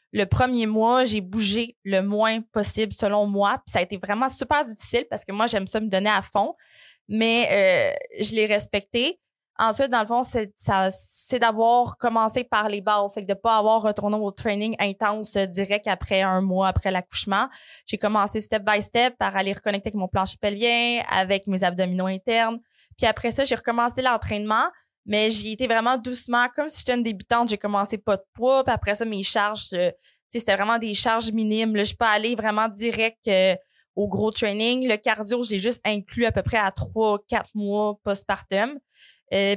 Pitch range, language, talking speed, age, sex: 205-240 Hz, French, 195 wpm, 20-39, female